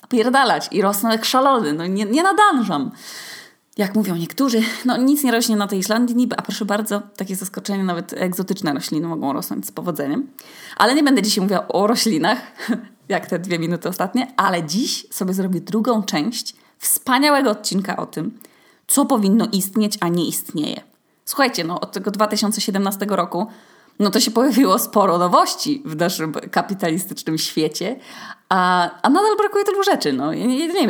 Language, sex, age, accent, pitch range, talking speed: Polish, female, 20-39, native, 185-270 Hz, 165 wpm